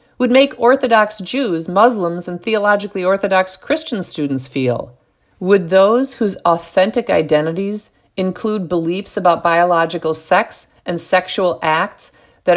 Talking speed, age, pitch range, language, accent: 120 wpm, 50-69, 160-220 Hz, English, American